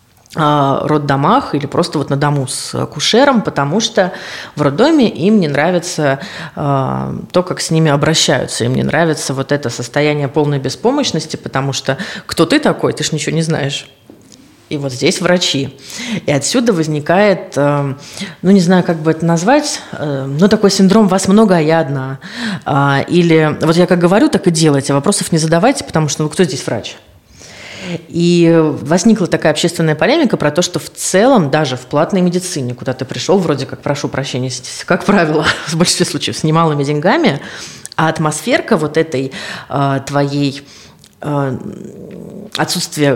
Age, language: 30-49, Russian